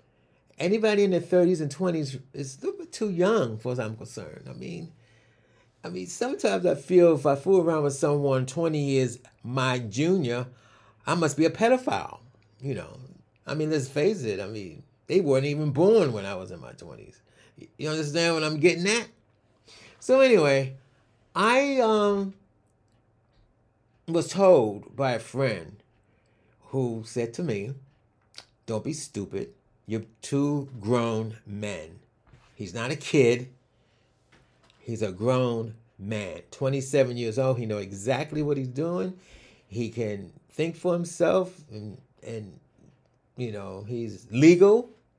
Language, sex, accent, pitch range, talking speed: English, male, American, 110-160 Hz, 145 wpm